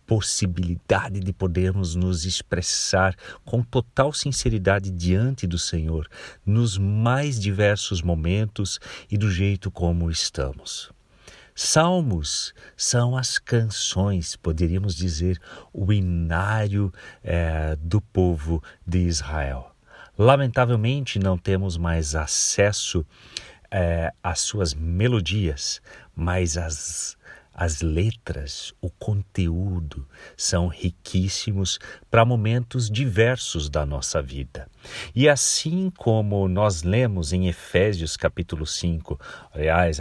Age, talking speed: 50-69, 100 wpm